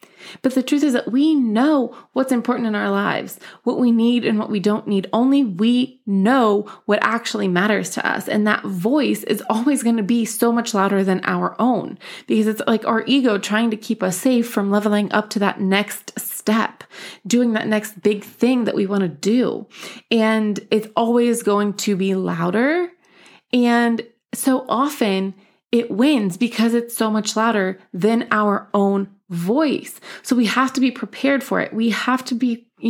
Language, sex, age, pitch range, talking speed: English, female, 20-39, 210-250 Hz, 185 wpm